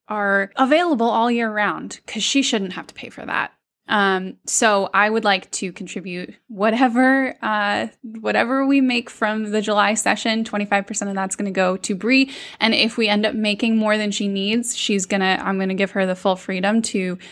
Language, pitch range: English, 195-235 Hz